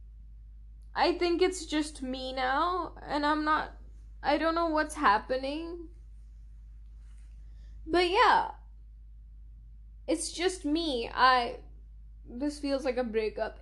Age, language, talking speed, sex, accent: 10-29, English, 110 wpm, female, Indian